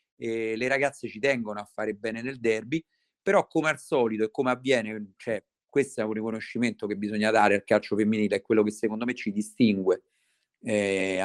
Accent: native